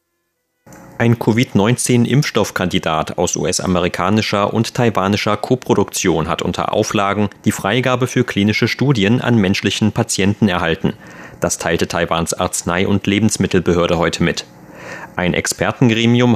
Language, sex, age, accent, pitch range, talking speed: German, male, 30-49, German, 95-115 Hz, 105 wpm